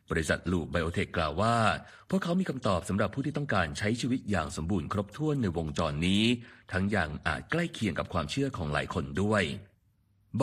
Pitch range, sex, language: 90-115 Hz, male, Thai